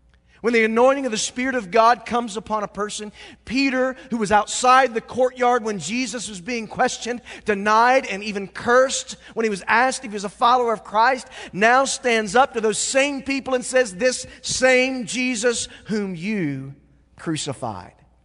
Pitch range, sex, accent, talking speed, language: 140-215 Hz, male, American, 175 wpm, English